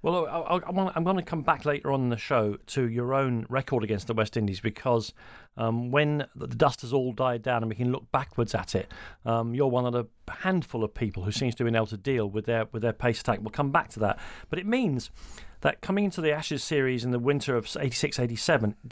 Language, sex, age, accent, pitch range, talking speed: English, male, 40-59, British, 115-150 Hz, 245 wpm